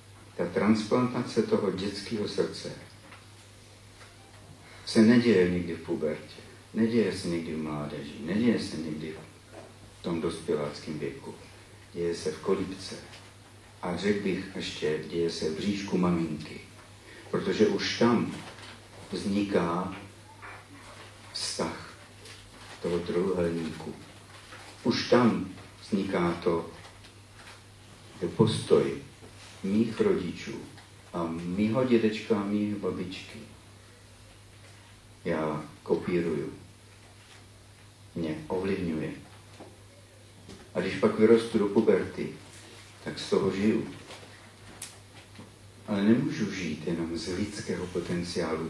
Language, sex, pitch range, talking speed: Czech, male, 85-105 Hz, 95 wpm